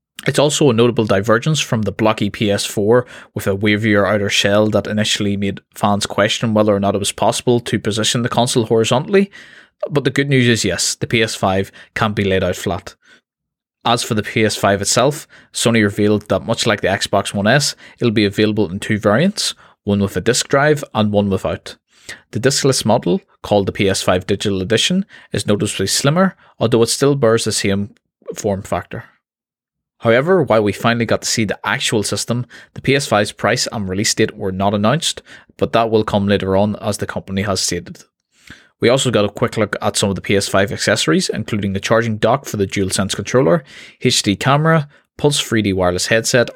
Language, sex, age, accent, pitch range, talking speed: English, male, 20-39, Irish, 100-120 Hz, 190 wpm